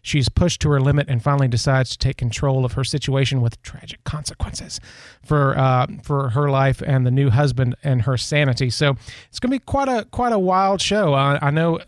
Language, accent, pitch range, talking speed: English, American, 130-155 Hz, 215 wpm